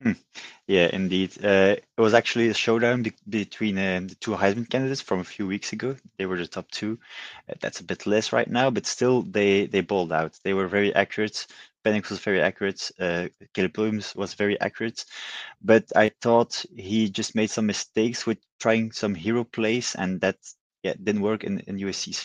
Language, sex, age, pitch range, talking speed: Dutch, male, 20-39, 90-110 Hz, 195 wpm